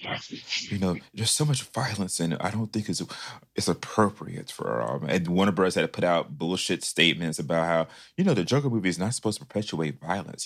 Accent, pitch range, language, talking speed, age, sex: American, 80-100 Hz, English, 220 wpm, 30-49, male